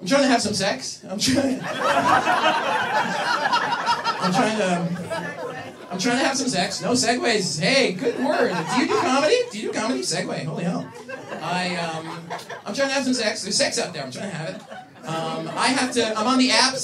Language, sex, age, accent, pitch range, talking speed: English, male, 30-49, American, 165-250 Hz, 215 wpm